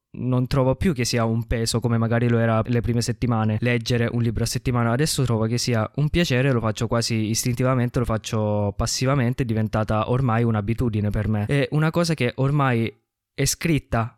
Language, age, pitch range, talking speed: Italian, 20-39, 110-135 Hz, 190 wpm